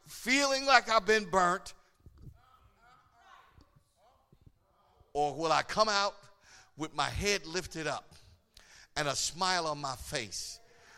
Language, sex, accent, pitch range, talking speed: English, male, American, 160-255 Hz, 115 wpm